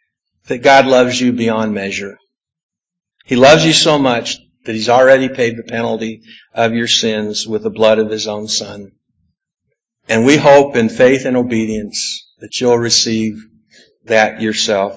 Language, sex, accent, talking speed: English, male, American, 155 wpm